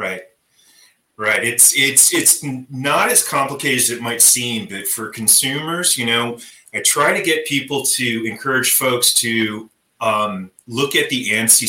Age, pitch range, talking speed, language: 30-49, 110-130 Hz, 160 wpm, English